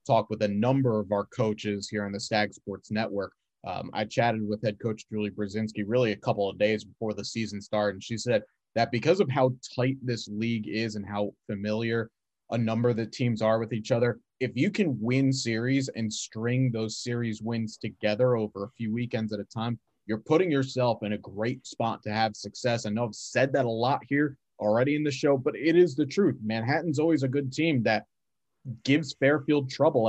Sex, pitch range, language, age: male, 110-130 Hz, English, 30-49